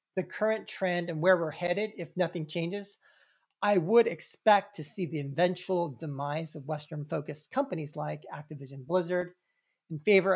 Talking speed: 150 wpm